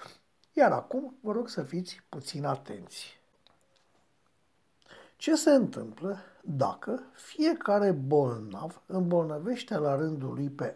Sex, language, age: male, Romanian, 60-79